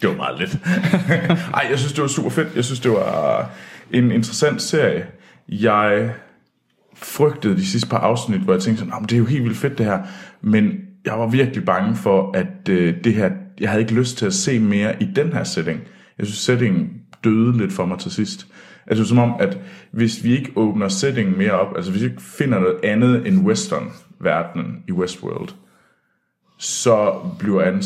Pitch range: 105-170 Hz